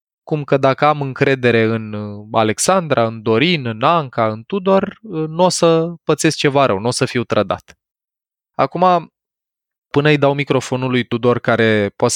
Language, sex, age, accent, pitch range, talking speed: Romanian, male, 20-39, native, 115-140 Hz, 165 wpm